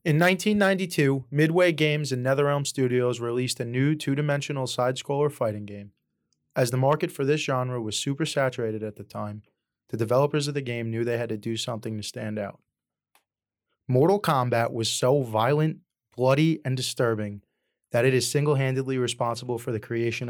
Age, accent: 20-39, American